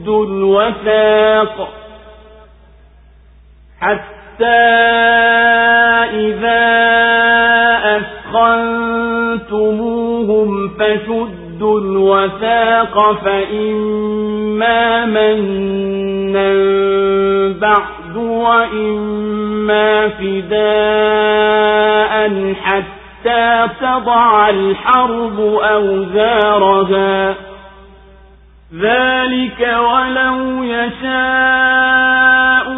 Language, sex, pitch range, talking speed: Swahili, male, 200-230 Hz, 35 wpm